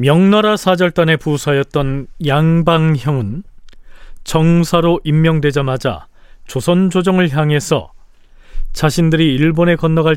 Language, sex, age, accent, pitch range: Korean, male, 40-59, native, 135-170 Hz